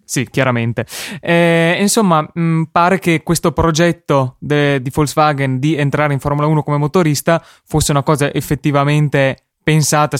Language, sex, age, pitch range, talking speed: Italian, male, 20-39, 135-160 Hz, 130 wpm